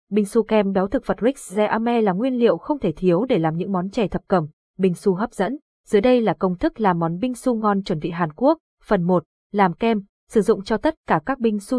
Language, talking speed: Vietnamese, 260 wpm